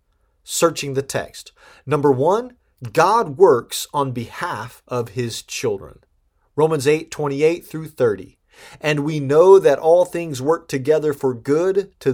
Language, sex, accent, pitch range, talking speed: English, male, American, 130-160 Hz, 140 wpm